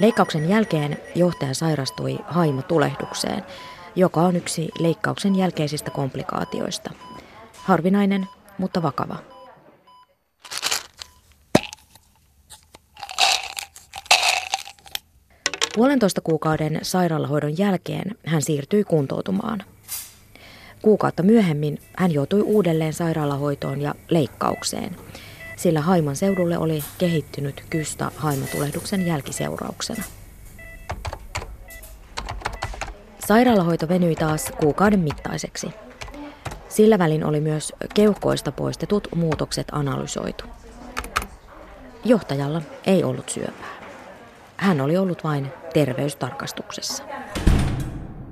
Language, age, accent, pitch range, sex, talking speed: Finnish, 20-39, native, 150-200 Hz, female, 75 wpm